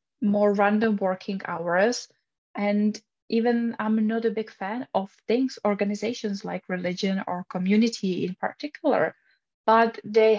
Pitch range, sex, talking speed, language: 185-215 Hz, female, 125 wpm, English